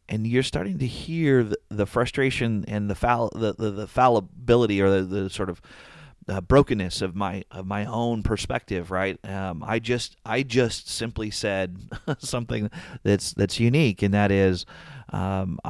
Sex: male